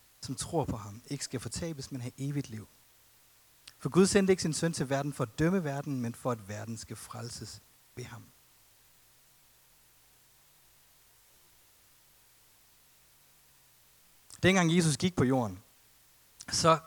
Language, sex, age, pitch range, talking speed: Danish, male, 30-49, 125-160 Hz, 130 wpm